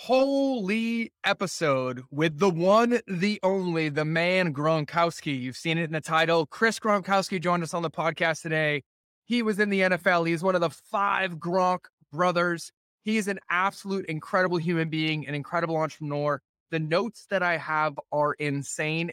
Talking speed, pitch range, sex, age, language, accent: 165 wpm, 155-185 Hz, male, 20-39, English, American